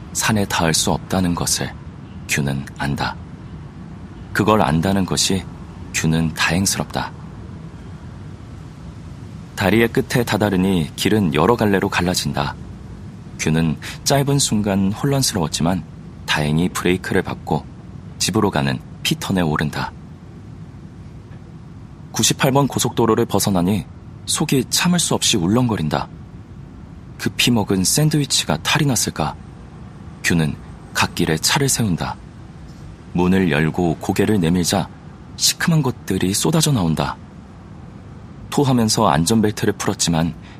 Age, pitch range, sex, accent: 40-59, 80-115 Hz, male, native